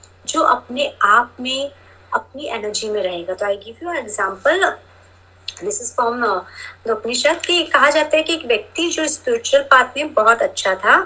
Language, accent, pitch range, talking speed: Hindi, native, 215-315 Hz, 100 wpm